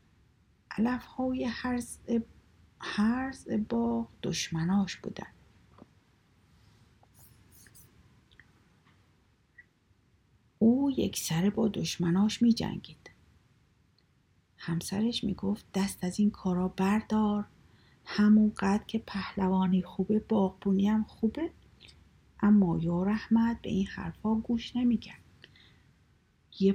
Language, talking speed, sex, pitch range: Persian, 90 wpm, female, 175-220 Hz